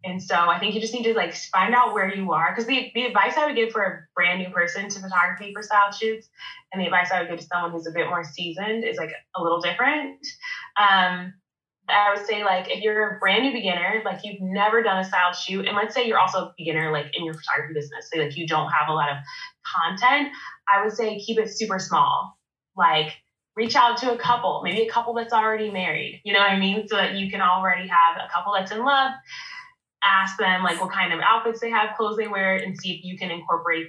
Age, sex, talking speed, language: 20-39, female, 250 wpm, English